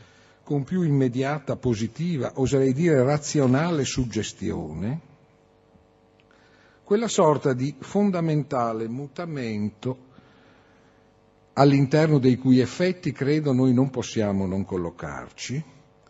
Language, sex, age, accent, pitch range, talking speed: Italian, male, 50-69, native, 100-145 Hz, 85 wpm